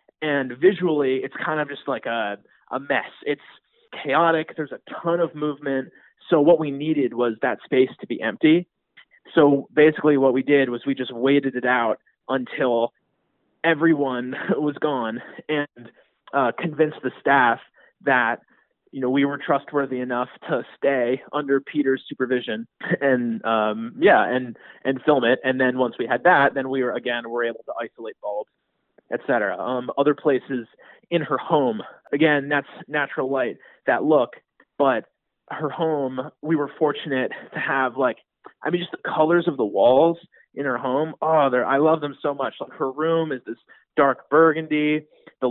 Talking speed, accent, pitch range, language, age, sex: 170 wpm, American, 130-155 Hz, English, 20-39, male